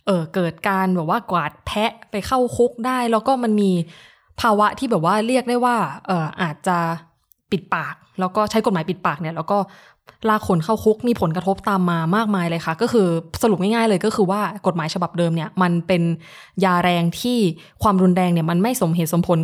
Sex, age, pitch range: female, 20-39, 170-215 Hz